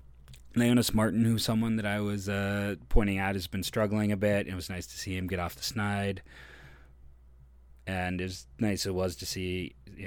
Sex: male